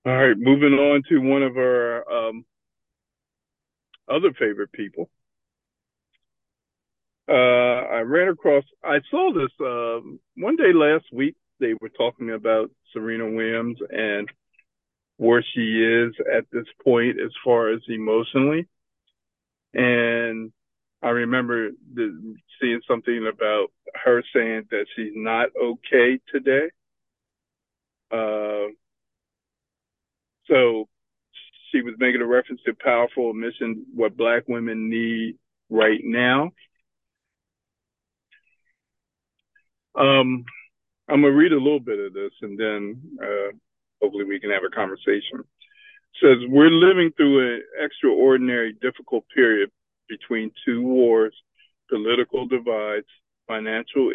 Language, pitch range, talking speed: English, 110-135 Hz, 120 wpm